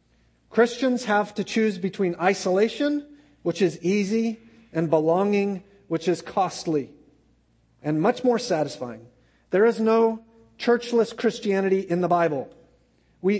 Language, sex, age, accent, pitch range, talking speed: English, male, 40-59, American, 150-200 Hz, 120 wpm